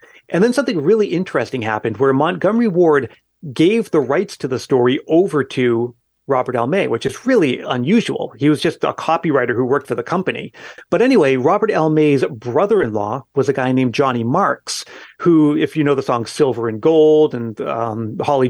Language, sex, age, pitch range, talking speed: English, male, 30-49, 125-160 Hz, 190 wpm